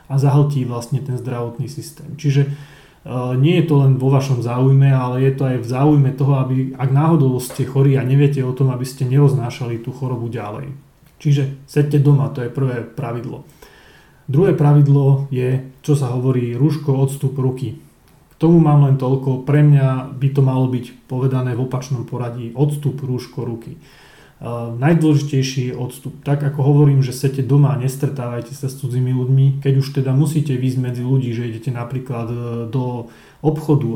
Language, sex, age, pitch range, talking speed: Slovak, male, 30-49, 125-140 Hz, 175 wpm